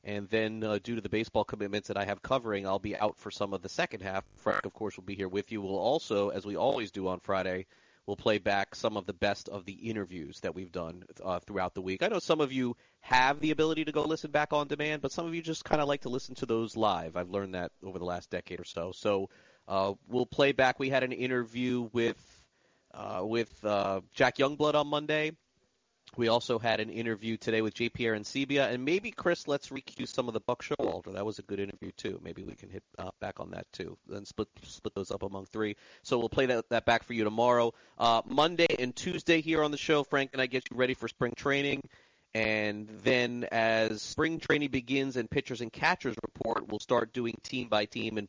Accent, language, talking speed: American, English, 240 wpm